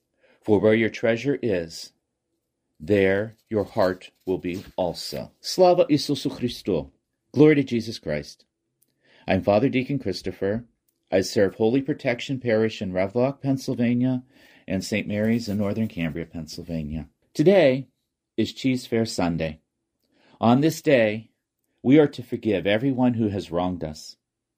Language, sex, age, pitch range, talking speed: Ukrainian, male, 40-59, 95-130 Hz, 130 wpm